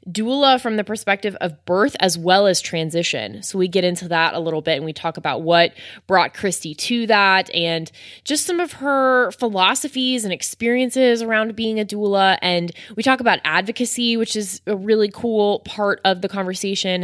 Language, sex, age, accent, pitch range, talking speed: English, female, 20-39, American, 160-195 Hz, 185 wpm